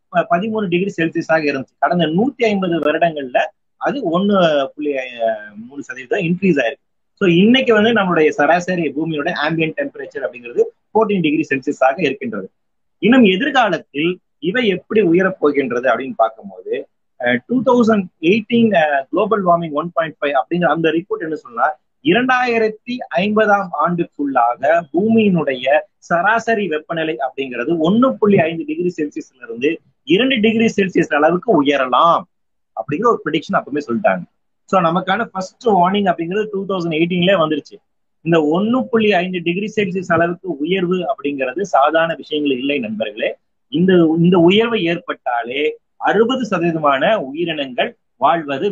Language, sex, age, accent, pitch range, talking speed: Tamil, male, 30-49, native, 150-210 Hz, 55 wpm